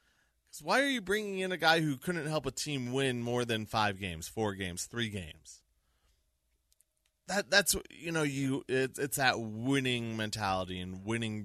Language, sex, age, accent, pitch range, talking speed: English, male, 20-39, American, 95-135 Hz, 170 wpm